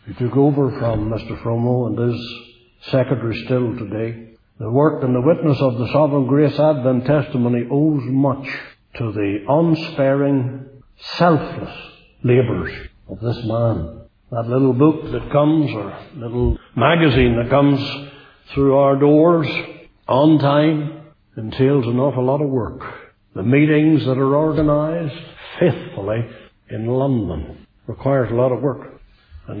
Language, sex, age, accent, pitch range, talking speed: English, male, 60-79, Irish, 115-140 Hz, 135 wpm